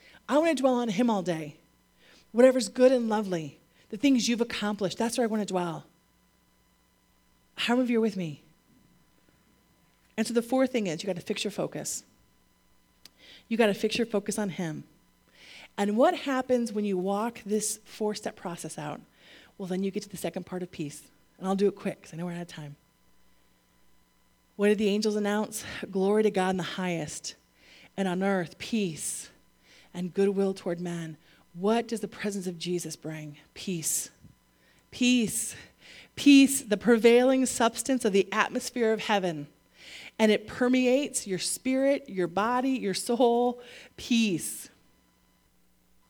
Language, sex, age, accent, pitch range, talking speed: English, female, 30-49, American, 170-230 Hz, 165 wpm